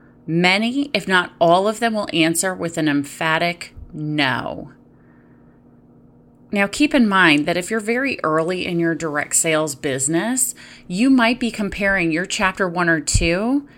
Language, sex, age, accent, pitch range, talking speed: English, female, 30-49, American, 150-210 Hz, 155 wpm